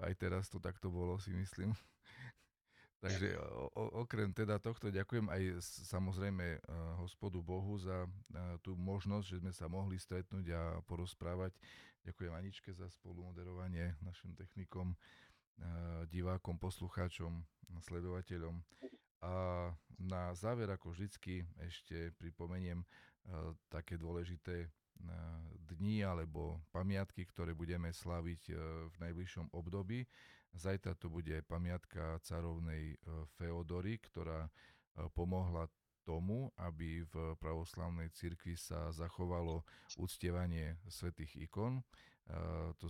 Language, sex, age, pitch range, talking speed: Slovak, male, 40-59, 85-95 Hz, 110 wpm